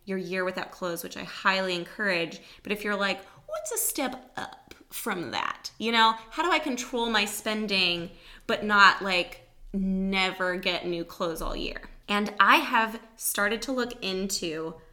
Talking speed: 170 wpm